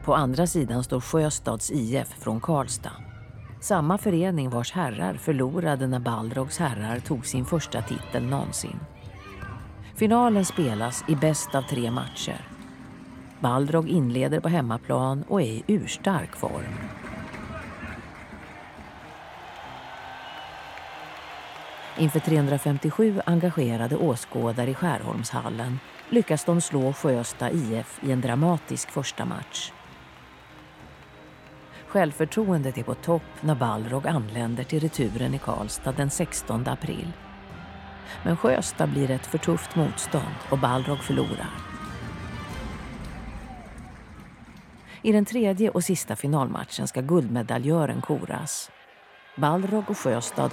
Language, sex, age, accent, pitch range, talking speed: Swedish, female, 40-59, native, 120-165 Hz, 105 wpm